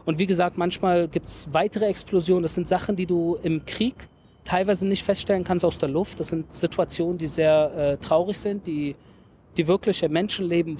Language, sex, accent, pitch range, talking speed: German, male, German, 165-200 Hz, 190 wpm